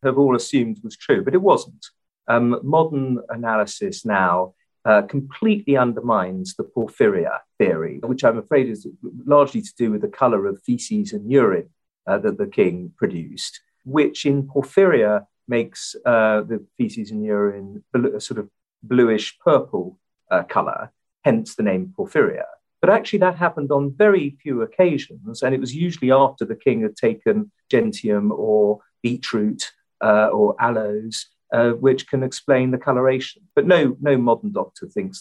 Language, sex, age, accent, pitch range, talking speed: English, male, 50-69, British, 105-175 Hz, 155 wpm